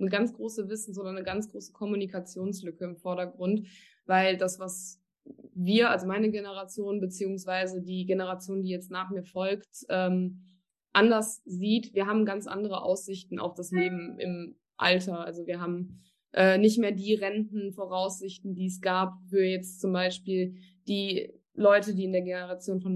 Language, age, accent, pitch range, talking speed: German, 20-39, German, 185-210 Hz, 160 wpm